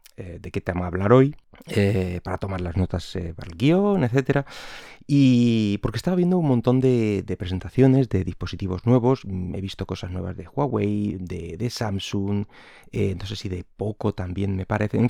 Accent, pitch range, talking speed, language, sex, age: Spanish, 95-120 Hz, 190 wpm, Spanish, male, 30-49